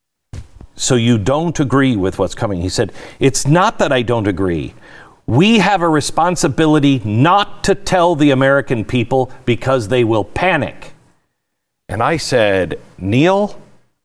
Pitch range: 125-200 Hz